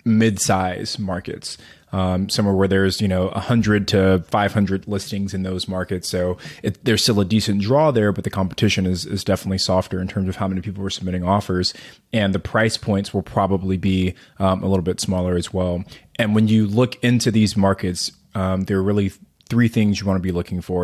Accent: American